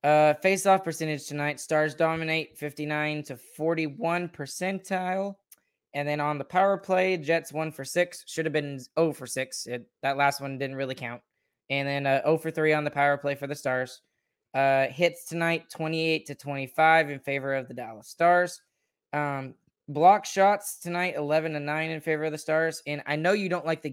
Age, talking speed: 20-39, 195 wpm